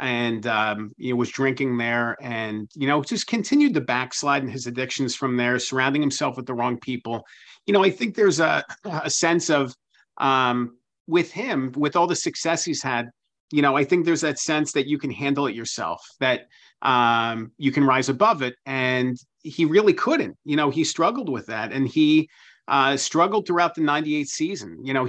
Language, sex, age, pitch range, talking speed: English, male, 40-59, 125-150 Hz, 200 wpm